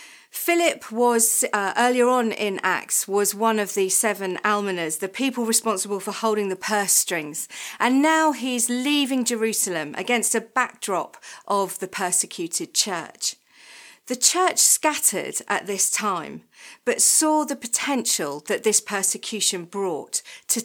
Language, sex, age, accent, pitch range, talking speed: English, female, 40-59, British, 195-255 Hz, 140 wpm